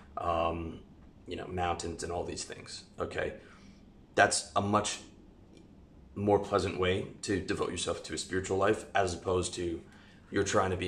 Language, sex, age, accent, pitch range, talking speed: English, male, 30-49, American, 90-95 Hz, 160 wpm